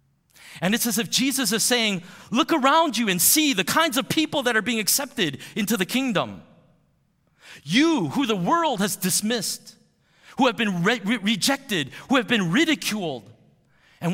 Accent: American